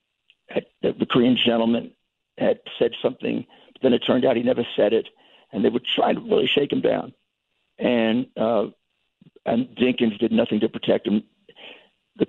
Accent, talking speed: American, 175 wpm